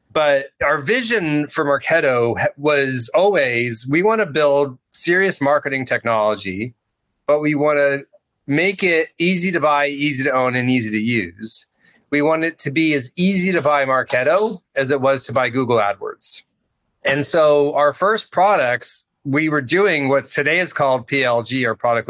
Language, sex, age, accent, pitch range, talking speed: English, male, 30-49, American, 130-160 Hz, 170 wpm